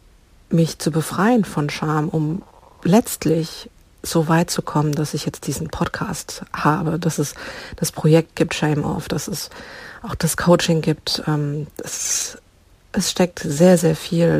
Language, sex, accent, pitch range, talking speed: German, female, German, 155-180 Hz, 150 wpm